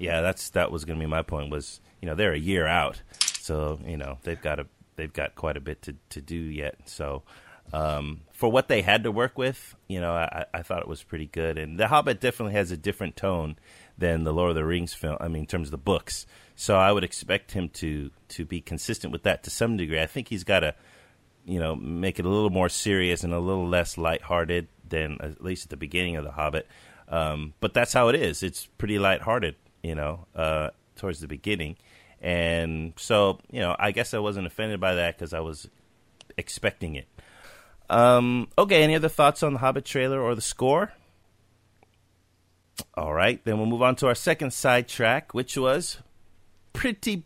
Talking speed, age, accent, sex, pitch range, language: 215 wpm, 30-49, American, male, 80-115 Hz, English